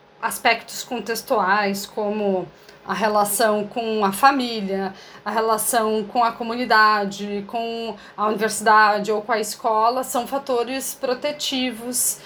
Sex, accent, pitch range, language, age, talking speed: female, Brazilian, 220-270 Hz, Portuguese, 20-39, 115 wpm